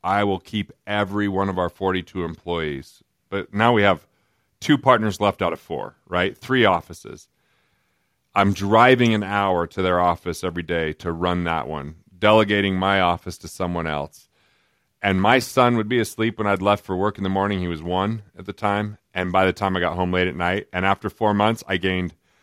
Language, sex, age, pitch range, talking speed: English, male, 40-59, 90-105 Hz, 205 wpm